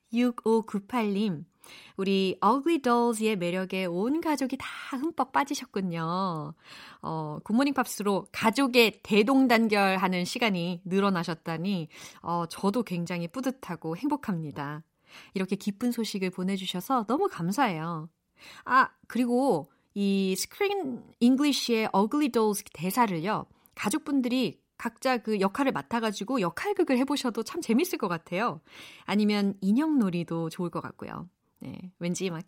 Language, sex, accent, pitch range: Korean, female, native, 185-265 Hz